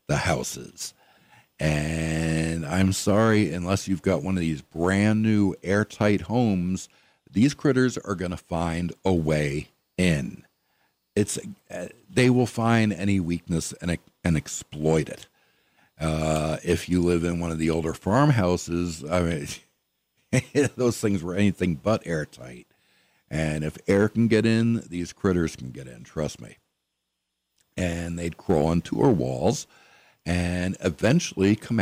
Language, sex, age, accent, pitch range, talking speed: English, male, 60-79, American, 80-110 Hz, 140 wpm